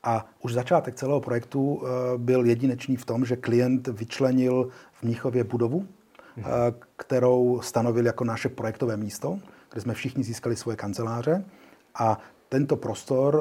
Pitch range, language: 115-135 Hz, Czech